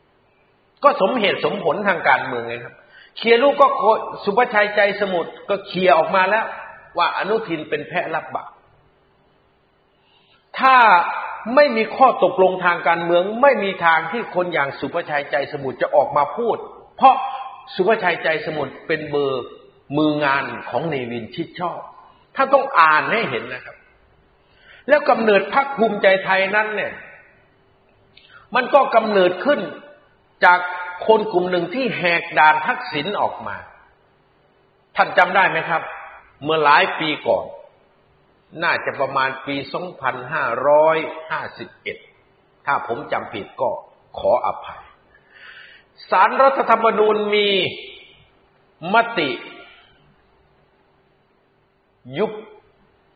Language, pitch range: Thai, 160-230 Hz